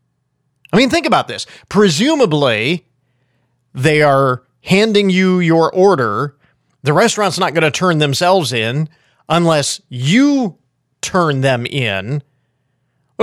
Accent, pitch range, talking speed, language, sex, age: American, 130-185 Hz, 120 wpm, English, male, 40-59